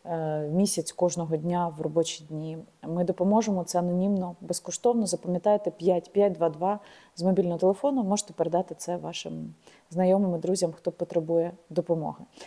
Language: Ukrainian